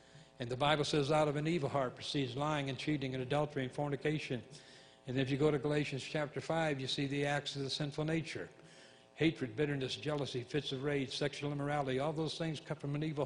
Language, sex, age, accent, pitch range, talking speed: English, male, 60-79, American, 135-155 Hz, 215 wpm